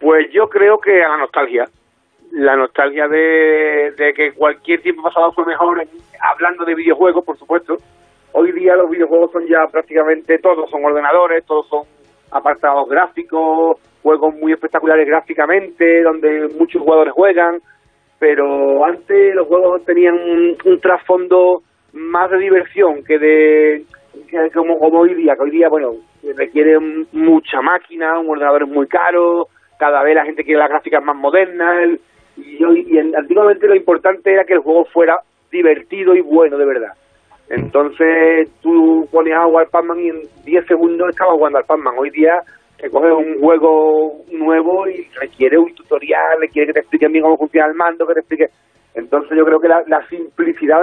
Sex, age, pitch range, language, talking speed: male, 40-59, 150-175 Hz, Spanish, 170 wpm